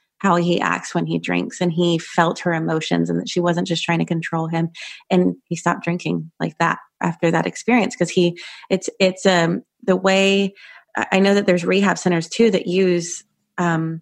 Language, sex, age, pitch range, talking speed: English, female, 30-49, 170-190 Hz, 195 wpm